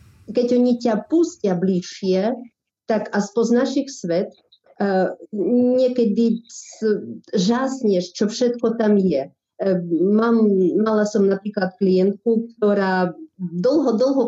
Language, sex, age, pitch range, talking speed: Slovak, female, 50-69, 190-235 Hz, 110 wpm